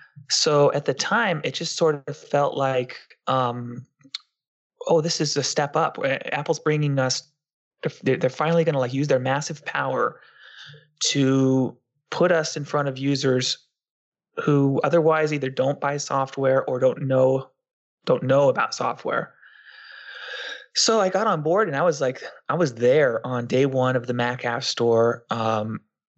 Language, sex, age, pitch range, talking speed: English, male, 20-39, 125-155 Hz, 160 wpm